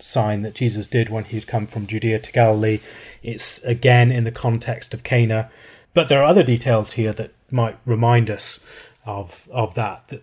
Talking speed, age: 195 wpm, 30-49